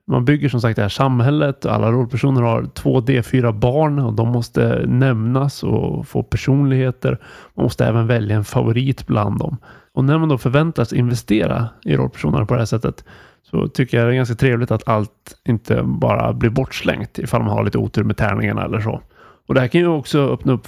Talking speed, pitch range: 205 wpm, 115-140 Hz